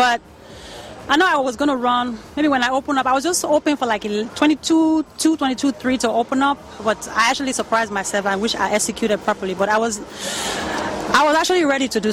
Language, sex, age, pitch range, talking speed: English, female, 30-49, 205-260 Hz, 220 wpm